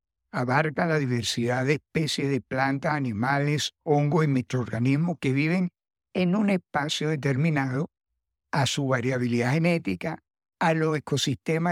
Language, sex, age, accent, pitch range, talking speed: Spanish, male, 60-79, American, 120-165 Hz, 125 wpm